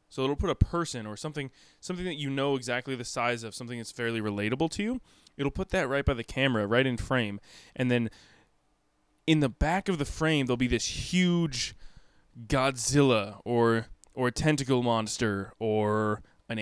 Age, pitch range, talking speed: 20-39, 110-135 Hz, 185 wpm